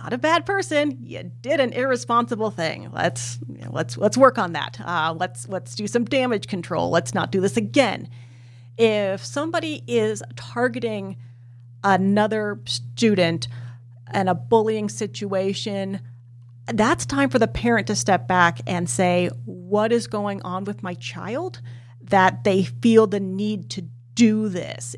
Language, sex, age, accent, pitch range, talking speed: English, female, 40-59, American, 125-210 Hz, 150 wpm